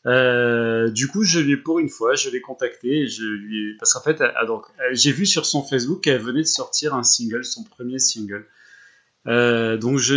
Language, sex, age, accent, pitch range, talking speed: French, male, 30-49, French, 110-135 Hz, 195 wpm